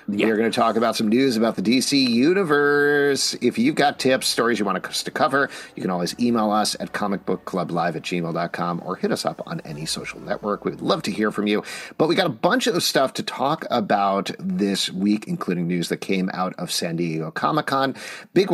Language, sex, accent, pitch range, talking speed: English, male, American, 100-130 Hz, 220 wpm